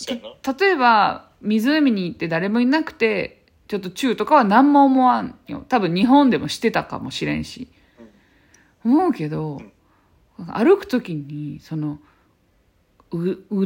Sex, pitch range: female, 180-280 Hz